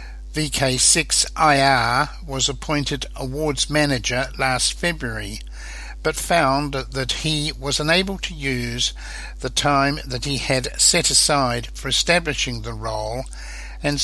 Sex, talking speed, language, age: male, 115 wpm, English, 60-79